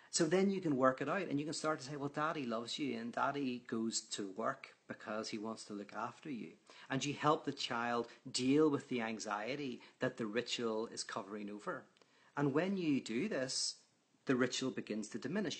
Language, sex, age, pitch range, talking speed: English, male, 40-59, 115-145 Hz, 210 wpm